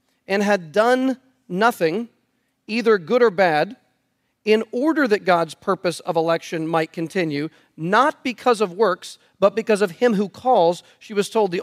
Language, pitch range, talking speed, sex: English, 205-255 Hz, 160 wpm, male